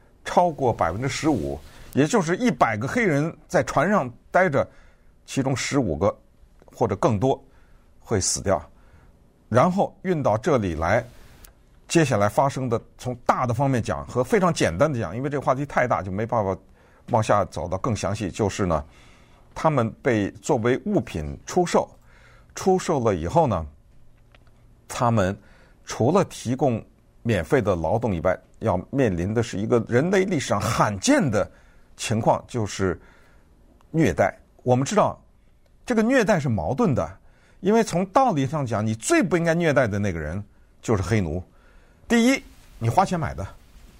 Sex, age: male, 50-69